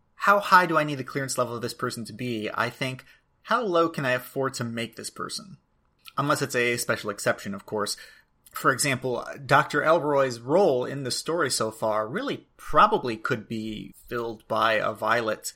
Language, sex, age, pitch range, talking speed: English, male, 30-49, 115-150 Hz, 190 wpm